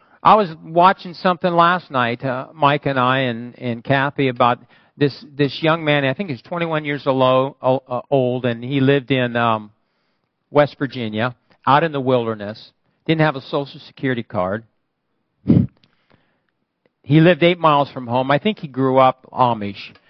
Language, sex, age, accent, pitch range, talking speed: English, male, 50-69, American, 130-175 Hz, 160 wpm